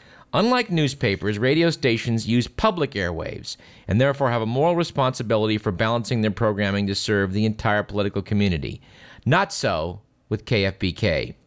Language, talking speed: English, 140 wpm